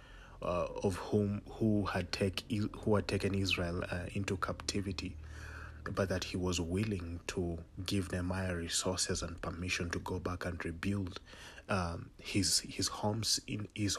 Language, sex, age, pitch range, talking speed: English, male, 30-49, 85-100 Hz, 150 wpm